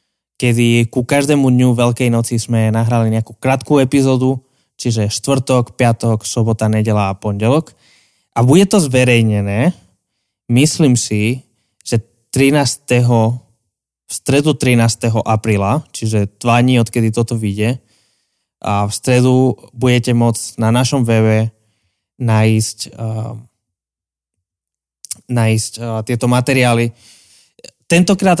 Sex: male